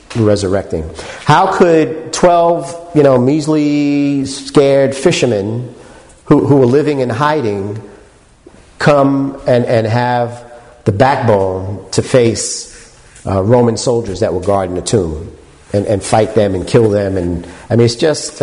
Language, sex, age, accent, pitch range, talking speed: English, male, 50-69, American, 95-135 Hz, 140 wpm